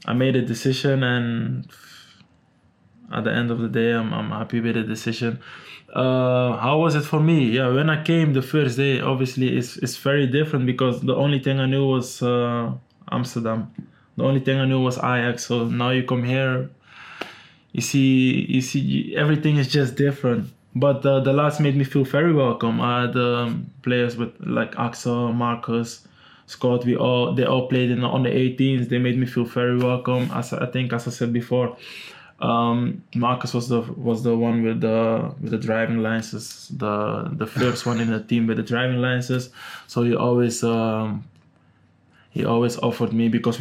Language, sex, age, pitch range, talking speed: English, male, 20-39, 115-130 Hz, 190 wpm